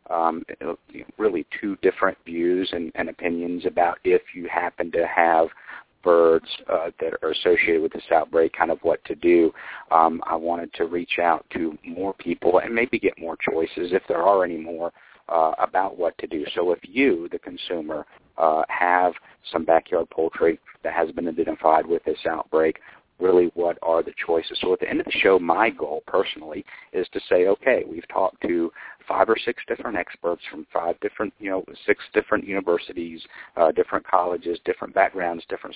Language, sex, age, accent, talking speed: English, male, 50-69, American, 180 wpm